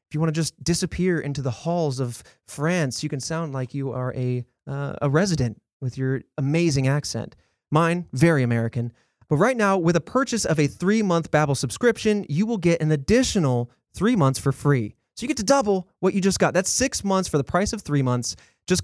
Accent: American